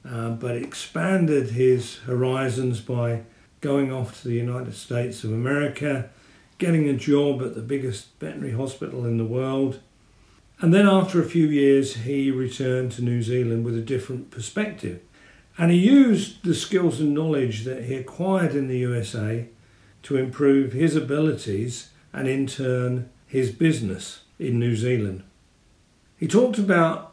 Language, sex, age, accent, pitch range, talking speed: English, male, 50-69, British, 115-145 Hz, 150 wpm